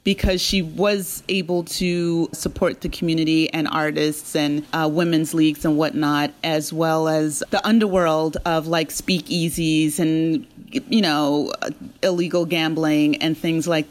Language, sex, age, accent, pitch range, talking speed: English, female, 30-49, American, 155-185 Hz, 140 wpm